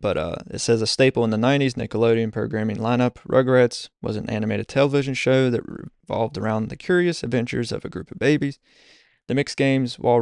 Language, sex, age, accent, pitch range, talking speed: English, male, 20-39, American, 110-130 Hz, 195 wpm